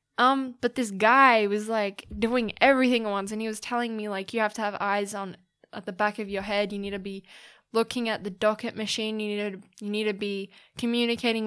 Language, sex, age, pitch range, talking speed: English, female, 10-29, 200-230 Hz, 235 wpm